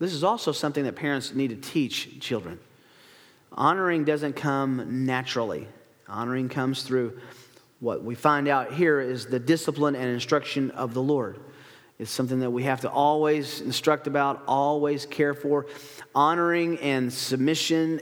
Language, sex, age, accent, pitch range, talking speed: English, male, 40-59, American, 135-190 Hz, 150 wpm